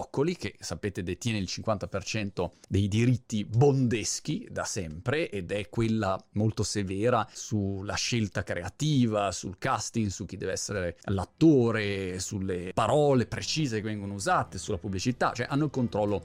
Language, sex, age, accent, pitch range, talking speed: Italian, male, 30-49, native, 105-140 Hz, 135 wpm